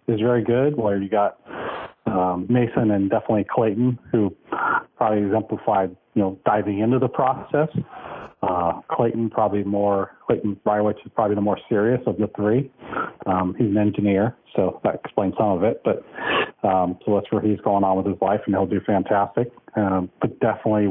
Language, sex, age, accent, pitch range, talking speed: English, male, 40-59, American, 100-120 Hz, 180 wpm